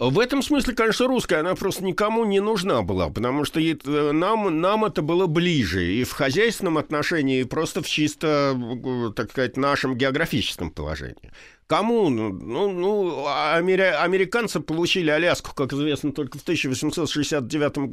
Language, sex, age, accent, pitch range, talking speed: Russian, male, 50-69, native, 150-210 Hz, 140 wpm